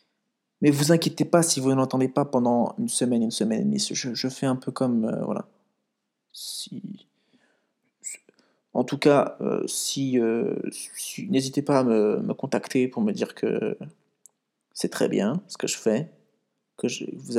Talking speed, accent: 175 wpm, French